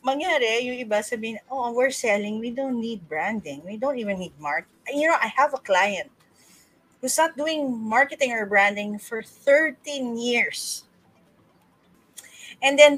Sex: female